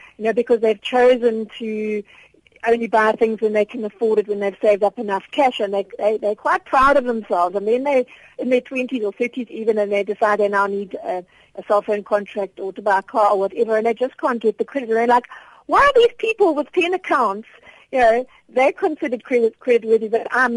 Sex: female